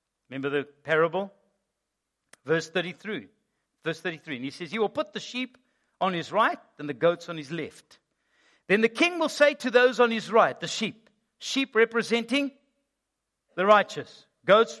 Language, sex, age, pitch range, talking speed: English, male, 60-79, 160-245 Hz, 165 wpm